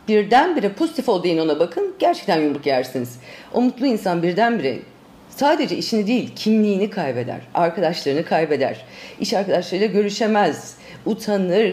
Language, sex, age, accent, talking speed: Turkish, female, 40-59, native, 120 wpm